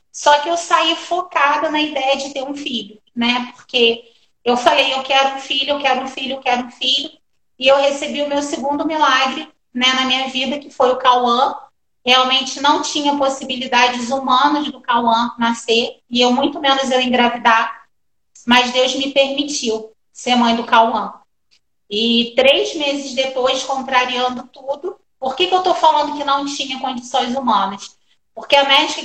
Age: 30-49